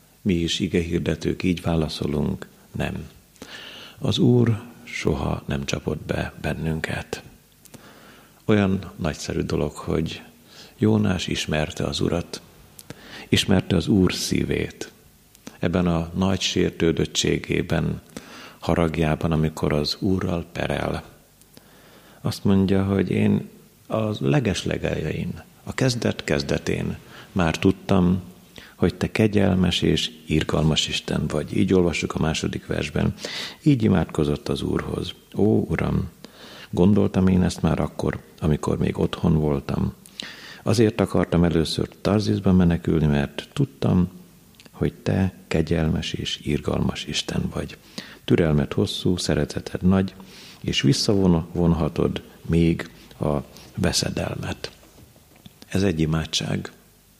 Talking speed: 105 wpm